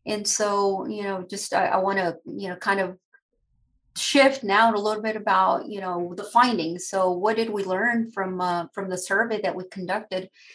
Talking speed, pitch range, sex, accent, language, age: 195 wpm, 190-230 Hz, female, American, English, 30-49